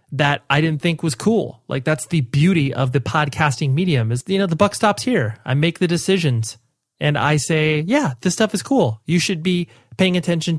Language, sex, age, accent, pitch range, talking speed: English, male, 30-49, American, 130-160 Hz, 215 wpm